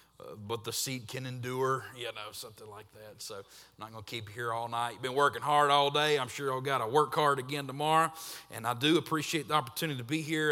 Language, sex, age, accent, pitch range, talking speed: English, male, 30-49, American, 115-155 Hz, 260 wpm